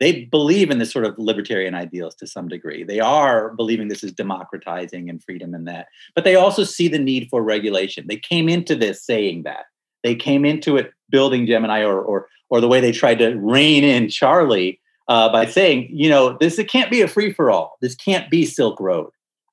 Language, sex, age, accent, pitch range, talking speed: English, male, 30-49, American, 110-160 Hz, 210 wpm